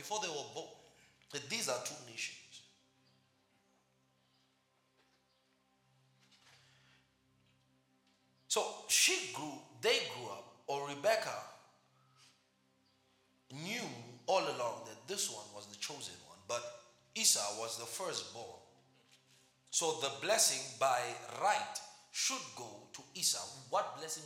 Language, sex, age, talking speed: English, male, 40-59, 105 wpm